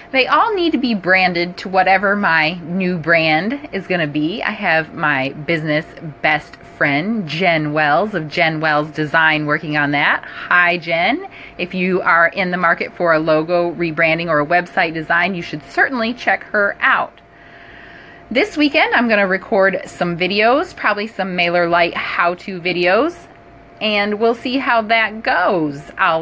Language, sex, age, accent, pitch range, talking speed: English, female, 30-49, American, 160-220 Hz, 165 wpm